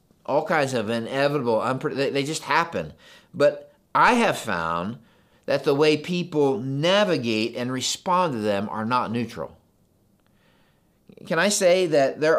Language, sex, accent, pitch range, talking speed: English, male, American, 125-160 Hz, 140 wpm